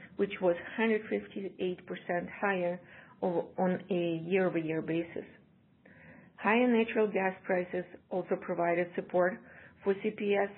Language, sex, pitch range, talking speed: English, female, 175-210 Hz, 95 wpm